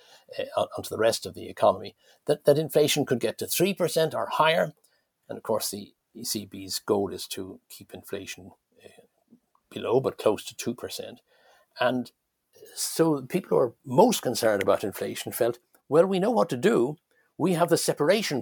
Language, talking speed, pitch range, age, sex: English, 170 wpm, 120-175 Hz, 60-79, male